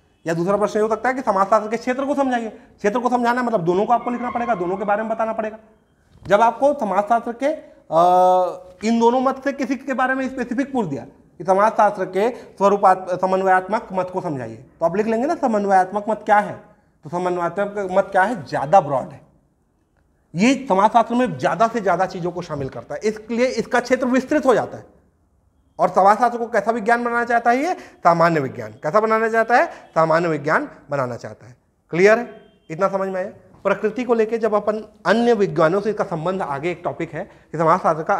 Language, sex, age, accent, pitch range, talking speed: Hindi, male, 30-49, native, 160-225 Hz, 200 wpm